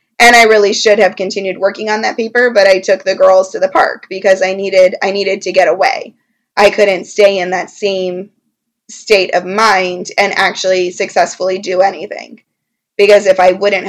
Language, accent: English, American